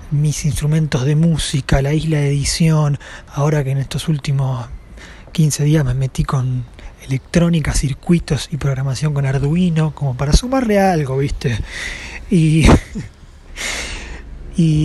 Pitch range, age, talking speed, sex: 125-155 Hz, 20-39, 125 wpm, male